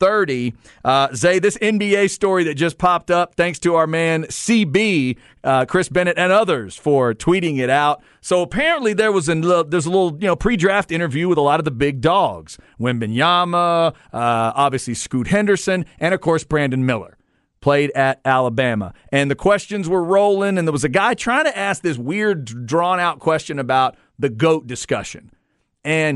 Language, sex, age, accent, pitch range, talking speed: English, male, 40-59, American, 130-185 Hz, 180 wpm